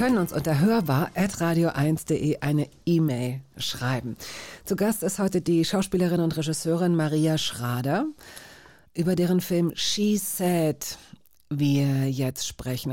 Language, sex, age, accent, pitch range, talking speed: German, female, 50-69, German, 145-180 Hz, 120 wpm